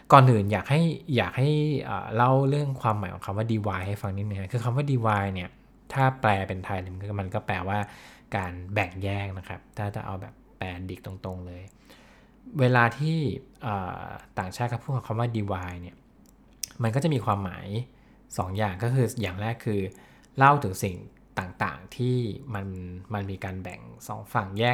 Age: 20-39